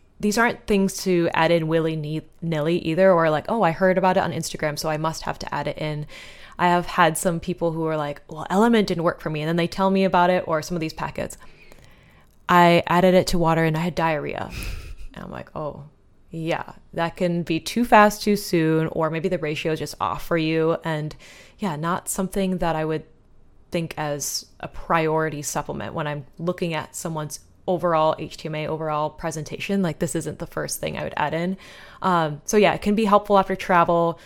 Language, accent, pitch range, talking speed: English, American, 155-180 Hz, 210 wpm